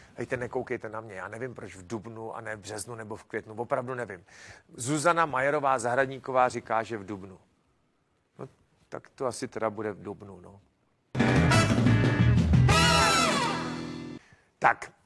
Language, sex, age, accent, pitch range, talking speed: Czech, male, 40-59, native, 120-155 Hz, 135 wpm